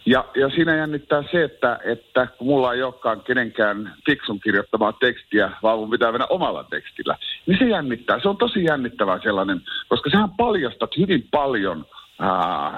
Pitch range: 120-180 Hz